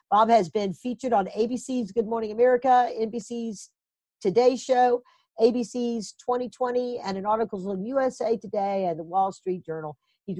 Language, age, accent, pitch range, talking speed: English, 50-69, American, 170-235 Hz, 155 wpm